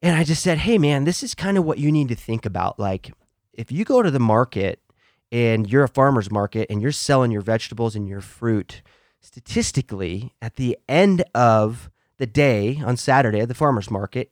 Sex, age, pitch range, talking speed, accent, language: male, 30-49, 110-150 Hz, 205 wpm, American, English